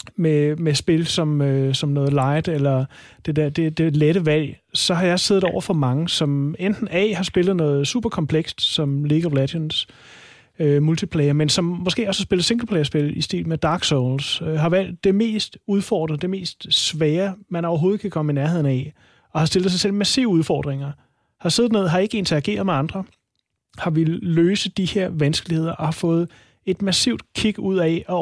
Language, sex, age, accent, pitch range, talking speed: Danish, male, 30-49, native, 150-185 Hz, 200 wpm